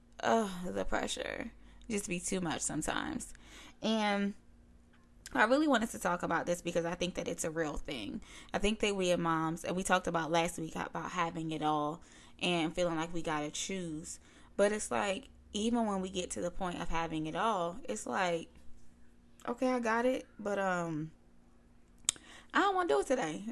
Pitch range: 165-235 Hz